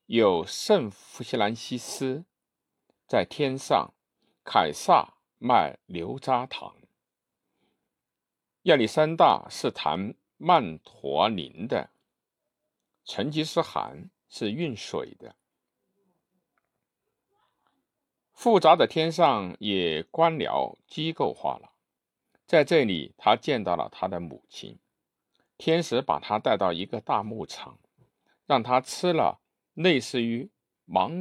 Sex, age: male, 50-69